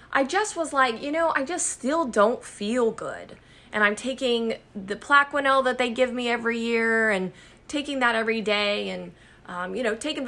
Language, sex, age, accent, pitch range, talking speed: English, female, 20-39, American, 210-270 Hz, 195 wpm